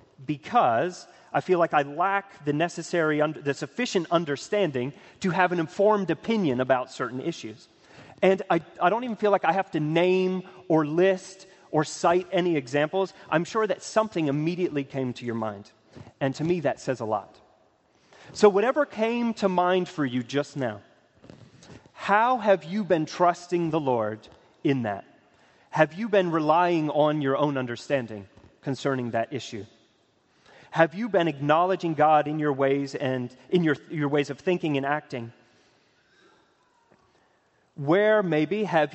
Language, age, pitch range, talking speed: English, 30-49, 135-185 Hz, 155 wpm